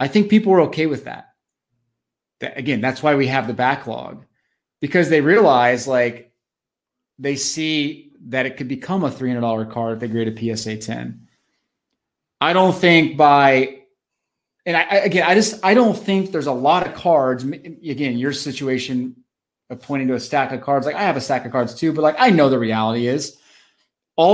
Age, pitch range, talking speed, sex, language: 30-49, 120-155 Hz, 195 wpm, male, English